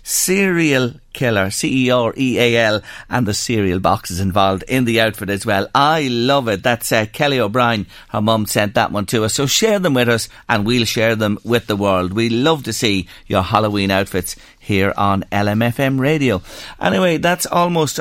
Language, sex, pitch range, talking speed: English, male, 105-130 Hz, 175 wpm